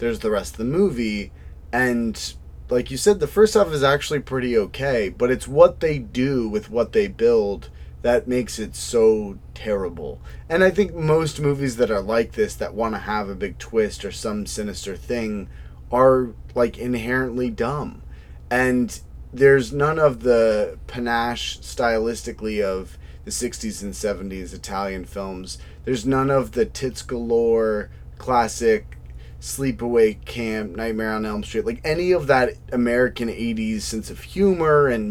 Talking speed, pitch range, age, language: 155 wpm, 105-145 Hz, 30-49, English